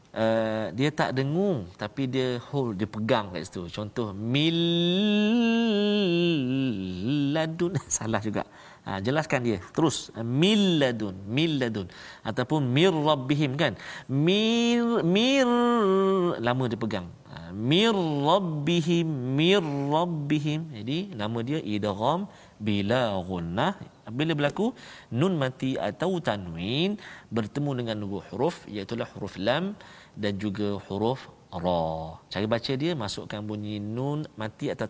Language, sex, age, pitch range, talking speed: Malayalam, male, 40-59, 105-160 Hz, 110 wpm